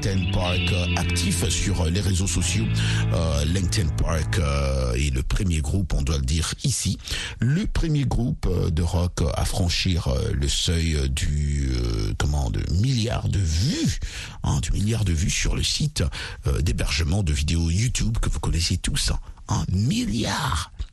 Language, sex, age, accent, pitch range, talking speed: French, male, 60-79, French, 80-105 Hz, 160 wpm